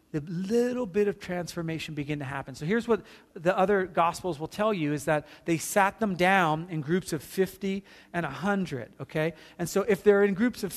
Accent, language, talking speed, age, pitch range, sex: American, English, 205 wpm, 40-59, 165-220 Hz, male